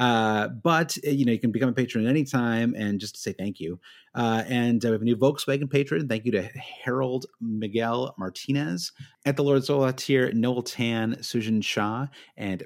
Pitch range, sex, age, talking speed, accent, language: 100-130 Hz, male, 30-49, 205 wpm, American, English